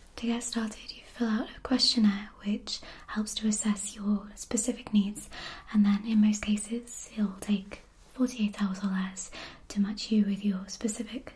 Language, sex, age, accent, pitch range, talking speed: English, female, 20-39, British, 195-225 Hz, 170 wpm